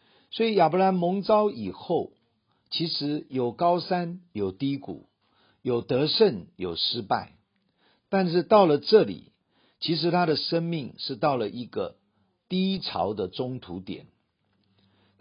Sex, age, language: male, 50-69, Chinese